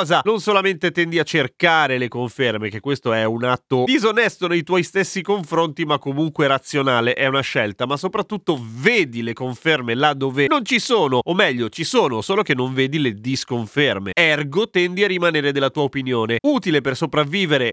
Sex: male